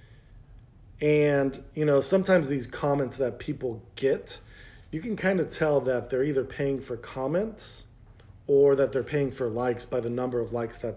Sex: male